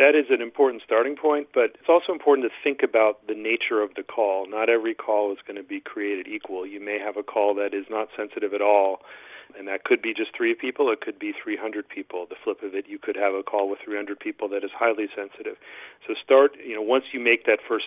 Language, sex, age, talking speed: English, male, 40-59, 250 wpm